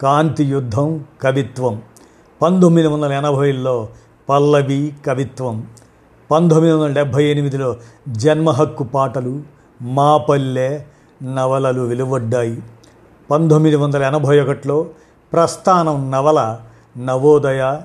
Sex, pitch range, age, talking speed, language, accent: male, 130-150 Hz, 50-69, 75 wpm, Telugu, native